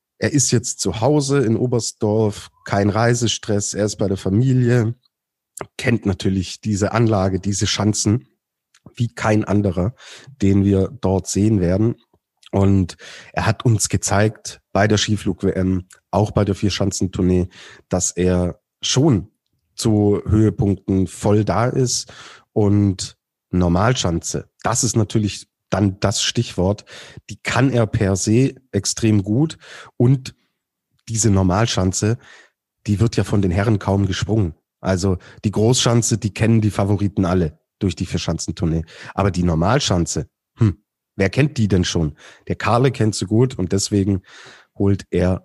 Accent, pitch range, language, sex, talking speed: German, 95-115 Hz, German, male, 140 wpm